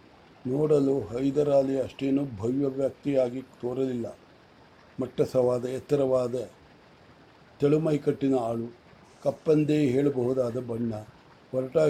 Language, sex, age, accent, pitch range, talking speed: English, male, 60-79, Indian, 130-150 Hz, 120 wpm